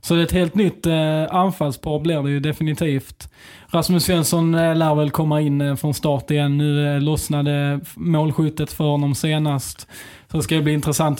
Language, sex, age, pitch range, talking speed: Swedish, male, 20-39, 145-160 Hz, 195 wpm